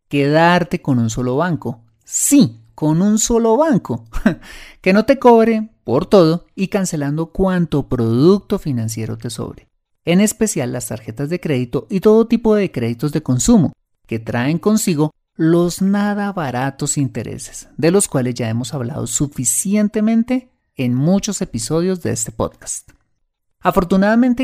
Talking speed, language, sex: 140 wpm, Spanish, male